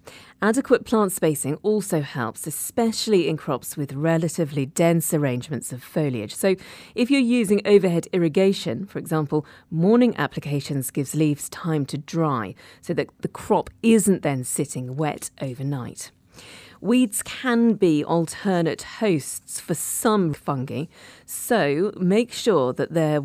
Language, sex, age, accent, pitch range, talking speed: English, female, 40-59, British, 140-190 Hz, 130 wpm